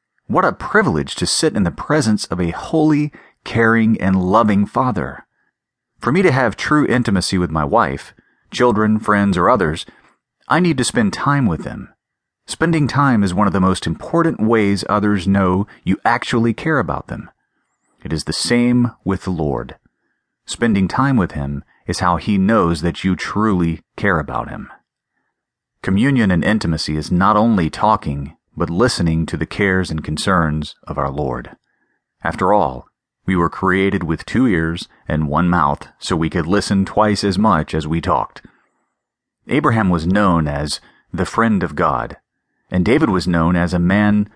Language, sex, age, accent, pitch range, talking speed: English, male, 30-49, American, 85-110 Hz, 170 wpm